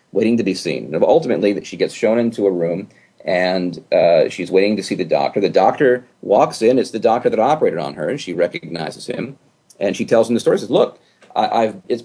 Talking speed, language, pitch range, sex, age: 235 wpm, English, 110-170 Hz, male, 40-59